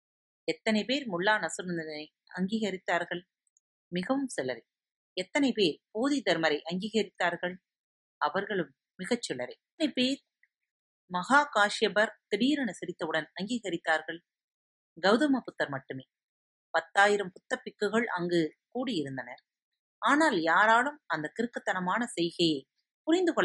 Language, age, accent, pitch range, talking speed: Tamil, 30-49, native, 170-240 Hz, 80 wpm